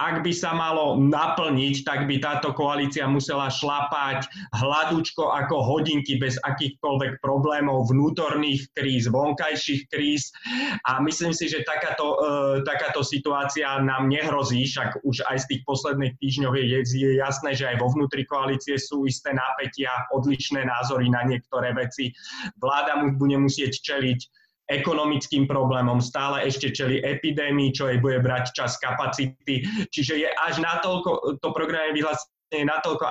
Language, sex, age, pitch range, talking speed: Slovak, male, 20-39, 130-150 Hz, 145 wpm